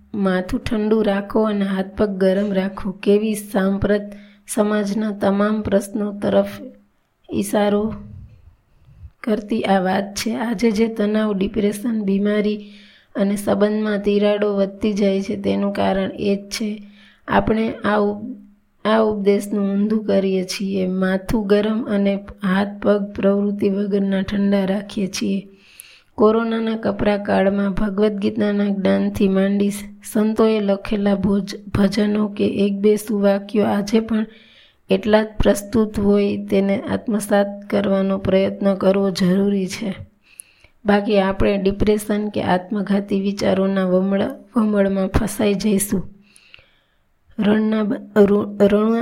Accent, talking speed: native, 110 wpm